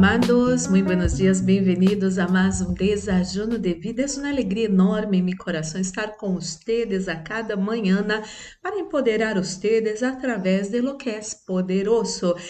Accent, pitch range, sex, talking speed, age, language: Brazilian, 190-225 Hz, female, 175 wpm, 50-69, Spanish